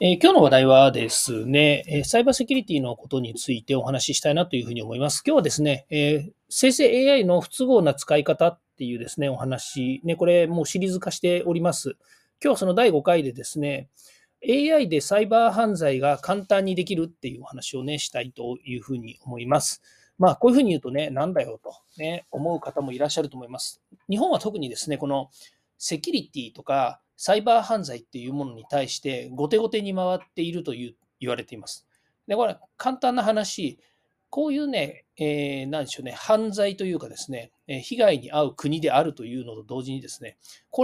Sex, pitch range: male, 135-220 Hz